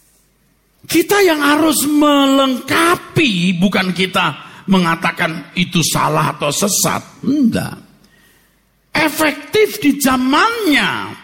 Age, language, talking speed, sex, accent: 50-69, Indonesian, 80 wpm, male, native